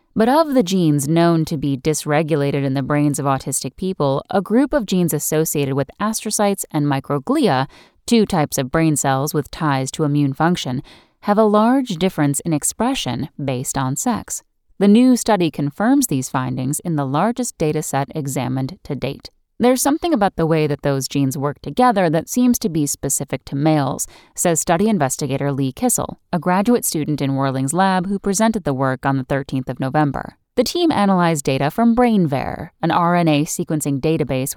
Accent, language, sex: American, English, female